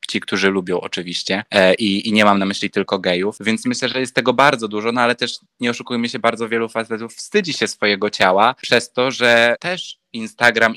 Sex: male